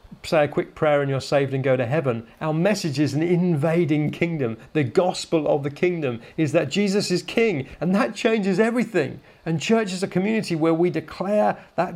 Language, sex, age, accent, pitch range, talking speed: English, male, 40-59, British, 135-170 Hz, 200 wpm